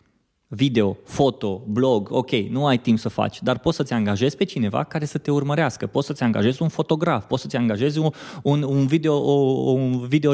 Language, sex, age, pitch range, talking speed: Romanian, male, 20-39, 115-145 Hz, 190 wpm